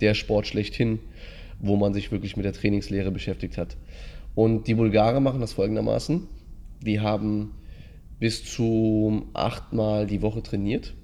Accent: German